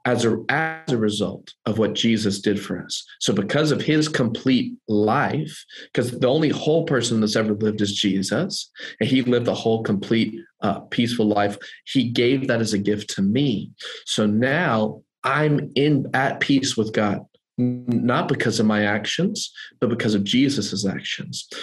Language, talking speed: English, 170 wpm